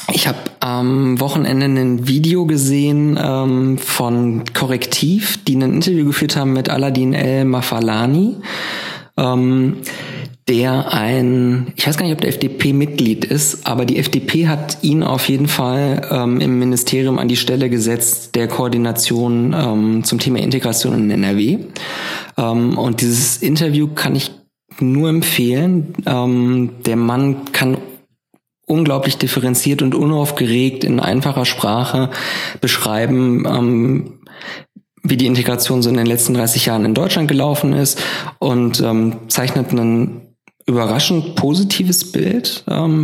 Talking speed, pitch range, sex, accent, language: 135 wpm, 120-150 Hz, male, German, German